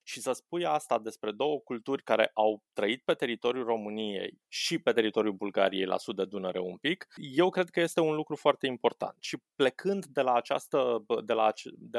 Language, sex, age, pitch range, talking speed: Romanian, male, 20-39, 115-150 Hz, 170 wpm